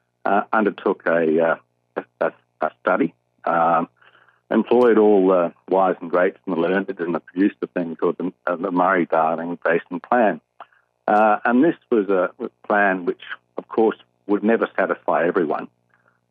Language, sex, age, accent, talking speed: English, male, 50-69, Australian, 145 wpm